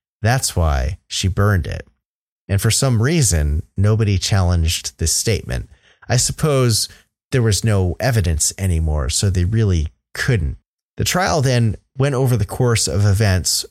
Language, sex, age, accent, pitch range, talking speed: English, male, 30-49, American, 90-115 Hz, 145 wpm